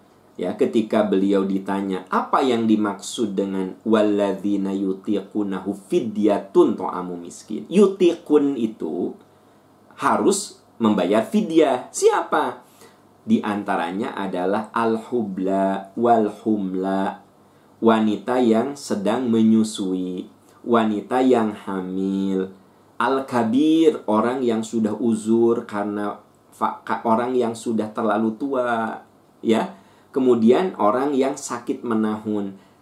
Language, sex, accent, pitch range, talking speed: Indonesian, male, native, 100-115 Hz, 90 wpm